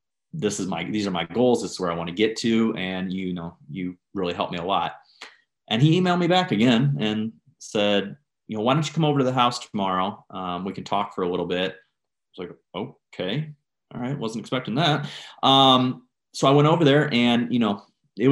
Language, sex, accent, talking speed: English, male, American, 225 wpm